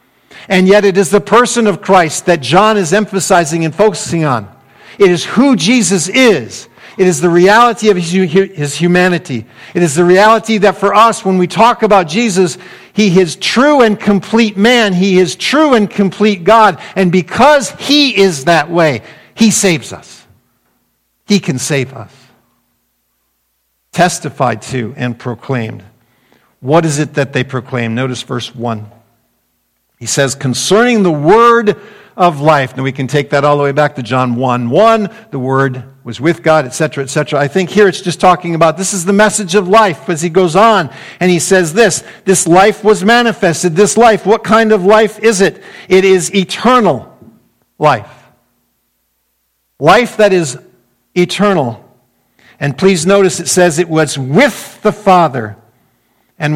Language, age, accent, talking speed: English, 50-69, American, 165 wpm